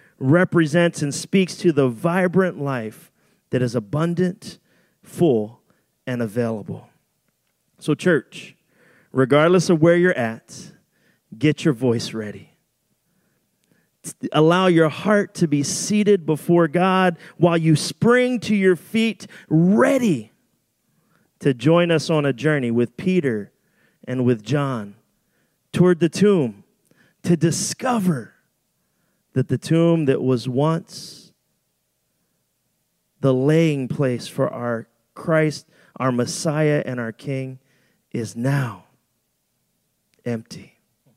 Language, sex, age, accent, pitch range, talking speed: English, male, 30-49, American, 125-175 Hz, 110 wpm